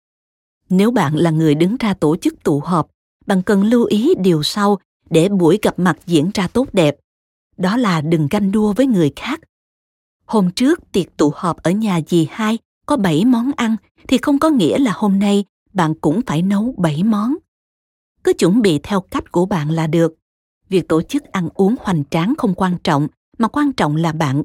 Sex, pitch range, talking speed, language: female, 165-220 Hz, 200 wpm, Vietnamese